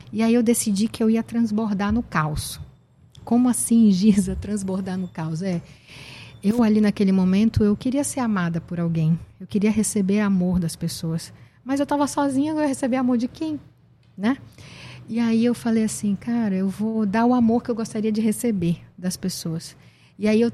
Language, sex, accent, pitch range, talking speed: Portuguese, female, Brazilian, 180-230 Hz, 190 wpm